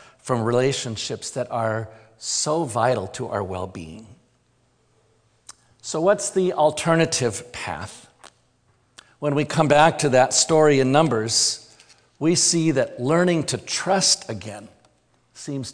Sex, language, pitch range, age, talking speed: male, English, 115-150 Hz, 50-69, 120 wpm